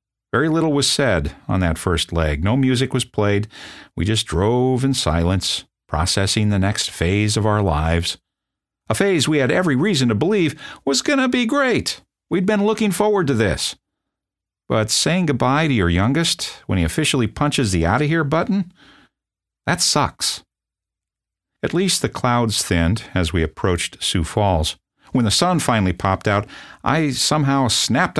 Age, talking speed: 50-69, 165 wpm